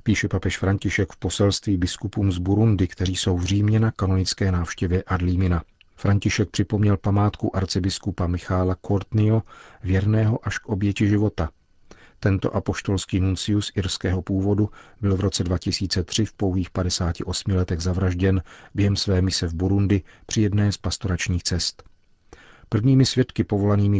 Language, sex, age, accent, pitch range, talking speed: Czech, male, 40-59, native, 90-100 Hz, 135 wpm